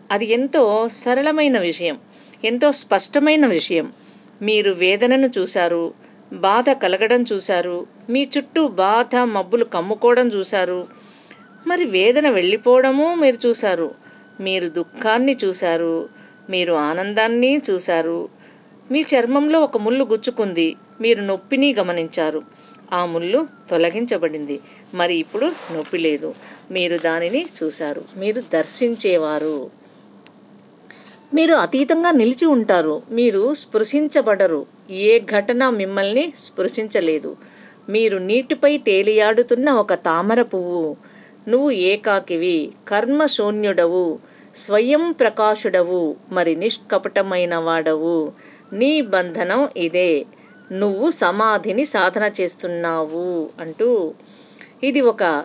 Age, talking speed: 50-69, 90 wpm